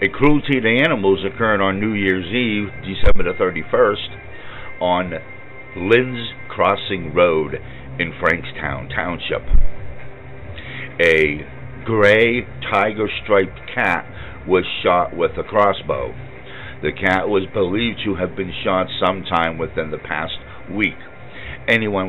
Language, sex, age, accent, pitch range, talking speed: English, male, 60-79, American, 90-115 Hz, 110 wpm